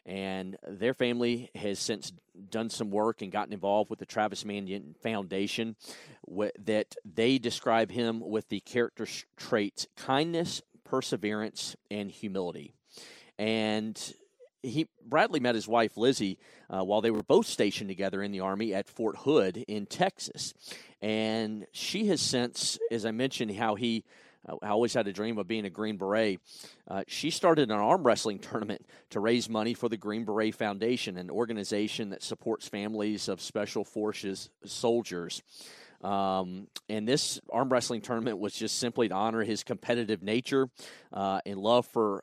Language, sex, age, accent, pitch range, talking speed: English, male, 40-59, American, 100-115 Hz, 160 wpm